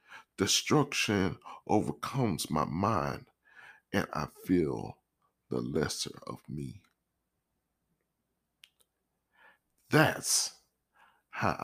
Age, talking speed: 40-59, 65 wpm